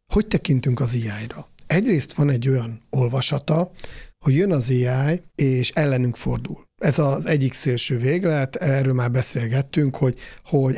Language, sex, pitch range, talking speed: Hungarian, male, 125-150 Hz, 145 wpm